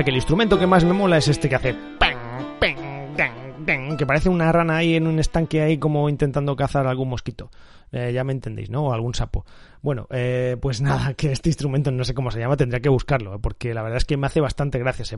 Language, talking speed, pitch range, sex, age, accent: Spanish, 230 wpm, 130-170 Hz, male, 30-49, Spanish